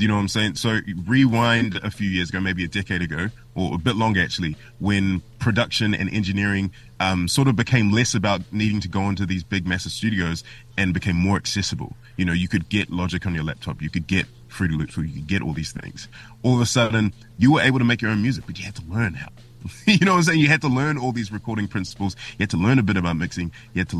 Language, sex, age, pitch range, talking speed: English, male, 20-39, 95-120 Hz, 265 wpm